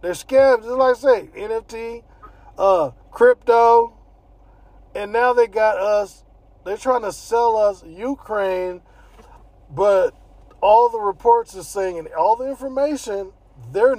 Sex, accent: male, American